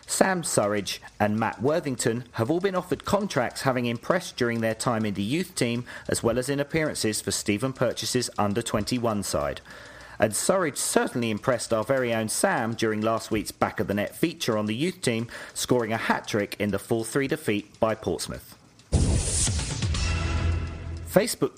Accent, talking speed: British, 160 wpm